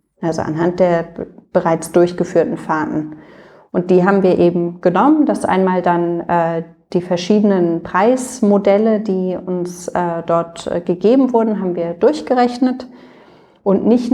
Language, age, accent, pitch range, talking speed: German, 30-49, German, 170-200 Hz, 125 wpm